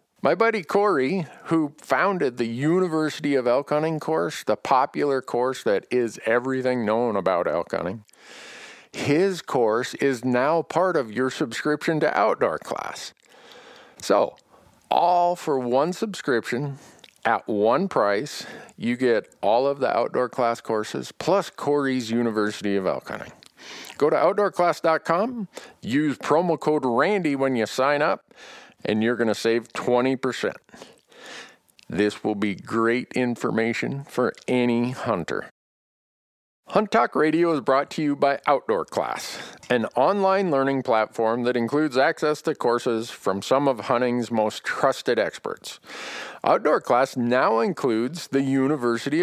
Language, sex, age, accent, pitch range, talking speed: English, male, 50-69, American, 115-160 Hz, 135 wpm